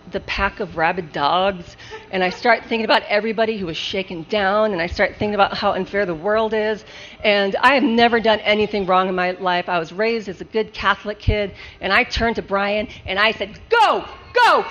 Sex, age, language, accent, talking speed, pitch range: female, 40-59, English, American, 215 wpm, 200-315 Hz